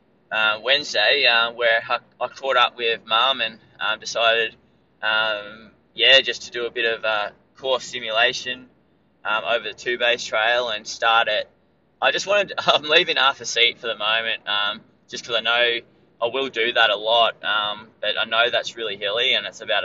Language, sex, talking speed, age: English, male, 195 wpm, 20-39